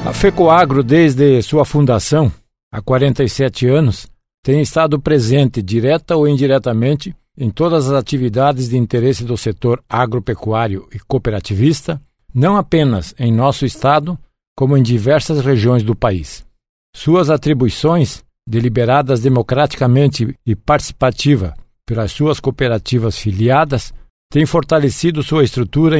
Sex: male